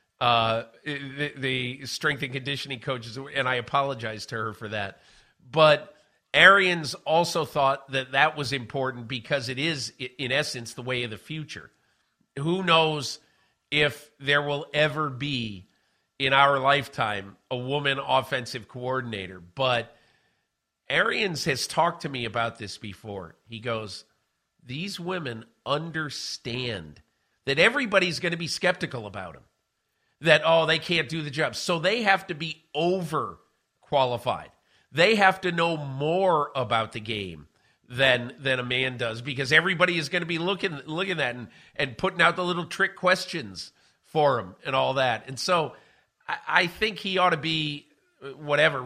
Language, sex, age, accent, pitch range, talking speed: English, male, 50-69, American, 120-160 Hz, 155 wpm